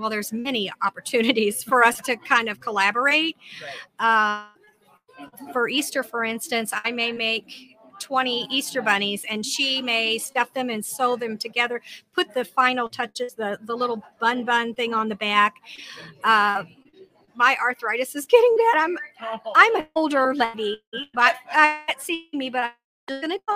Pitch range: 215-265 Hz